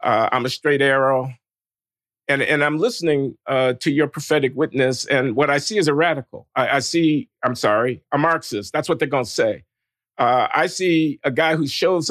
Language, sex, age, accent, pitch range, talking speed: English, male, 50-69, American, 135-170 Hz, 205 wpm